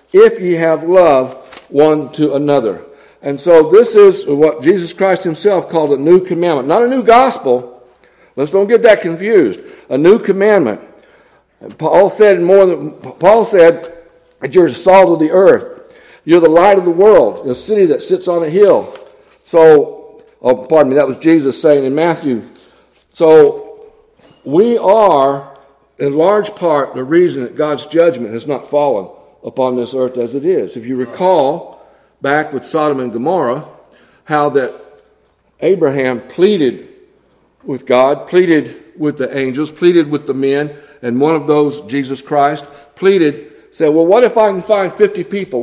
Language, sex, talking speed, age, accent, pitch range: English, male, 165 wpm, 60-79, American, 145-220 Hz